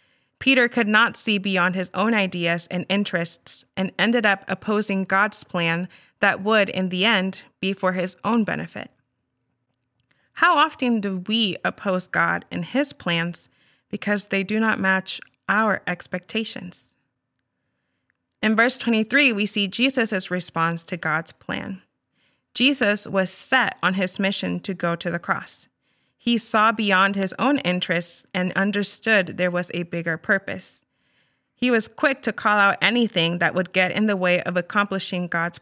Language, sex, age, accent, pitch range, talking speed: English, female, 30-49, American, 180-220 Hz, 155 wpm